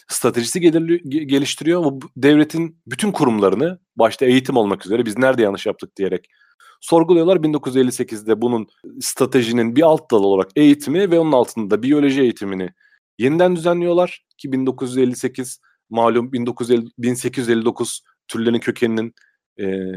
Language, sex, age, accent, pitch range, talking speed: Turkish, male, 40-59, native, 115-155 Hz, 115 wpm